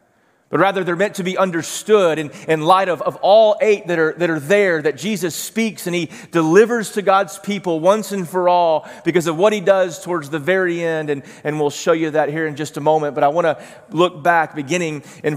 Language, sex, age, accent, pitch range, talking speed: English, male, 30-49, American, 155-195 Hz, 235 wpm